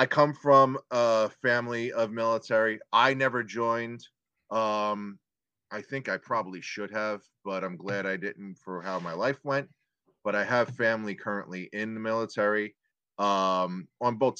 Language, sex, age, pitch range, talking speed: English, male, 30-49, 95-110 Hz, 160 wpm